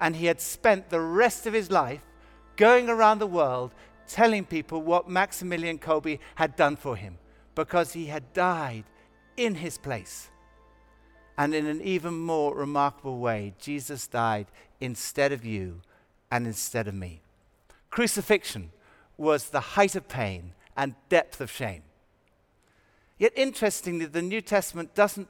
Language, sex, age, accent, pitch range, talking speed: English, male, 60-79, British, 120-180 Hz, 145 wpm